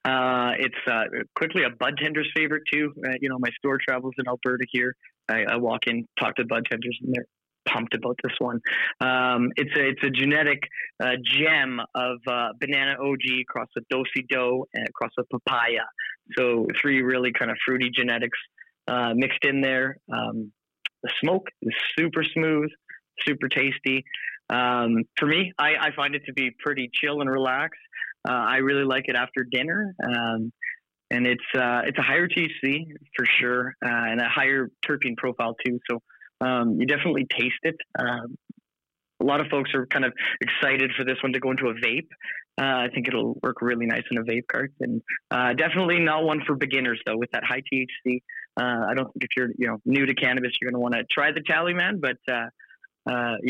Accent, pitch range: American, 120-140 Hz